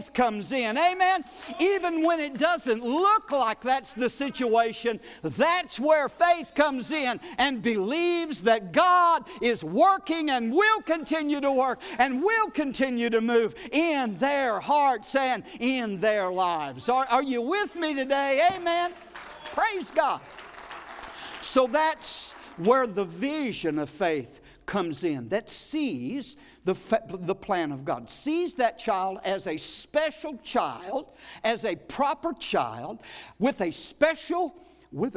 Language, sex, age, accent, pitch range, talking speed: English, male, 60-79, American, 185-305 Hz, 135 wpm